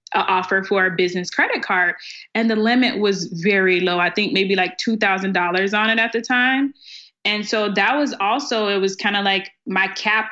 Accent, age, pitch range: American, 20-39, 190-230 Hz